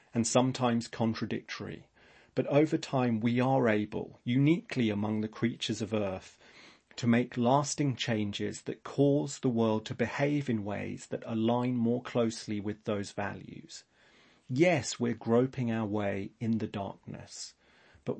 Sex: male